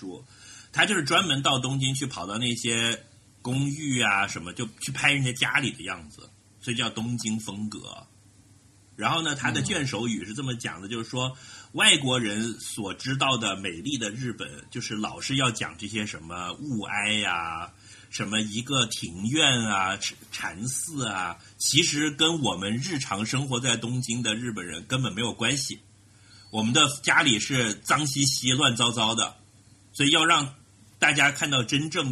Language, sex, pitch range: Chinese, male, 105-130 Hz